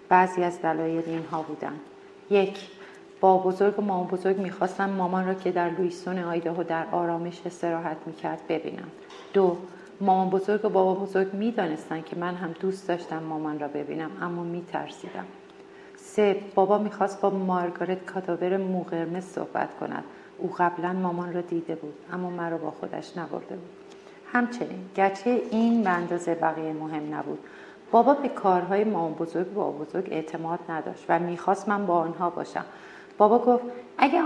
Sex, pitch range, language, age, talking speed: female, 170-200 Hz, Persian, 40-59, 155 wpm